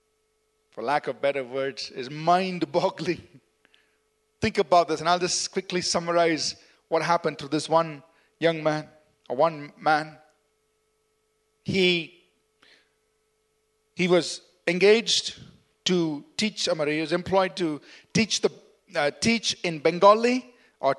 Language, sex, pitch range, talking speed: English, male, 170-215 Hz, 120 wpm